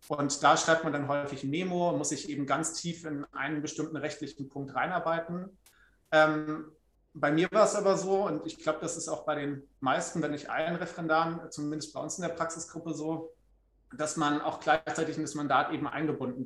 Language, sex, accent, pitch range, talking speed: German, male, German, 140-160 Hz, 195 wpm